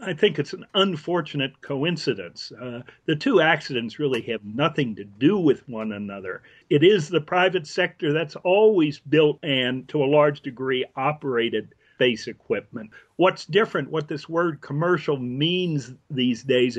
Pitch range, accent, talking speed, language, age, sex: 130-160 Hz, American, 155 wpm, English, 50-69, male